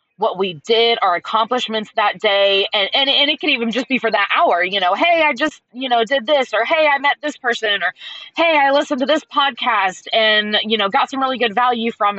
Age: 20-39